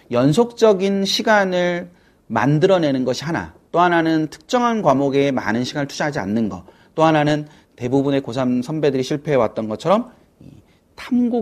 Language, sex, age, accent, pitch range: Korean, male, 30-49, native, 100-150 Hz